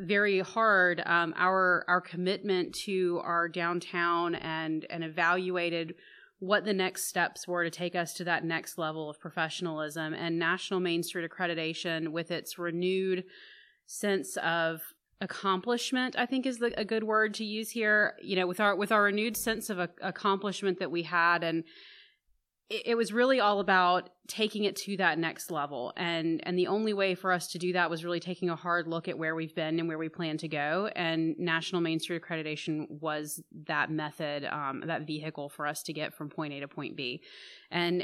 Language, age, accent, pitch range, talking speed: English, 30-49, American, 160-190 Hz, 190 wpm